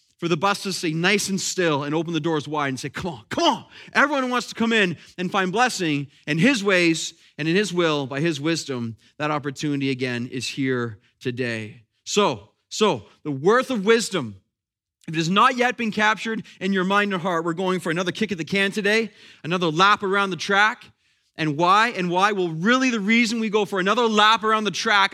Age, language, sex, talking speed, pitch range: 30-49, English, male, 220 wpm, 170-215 Hz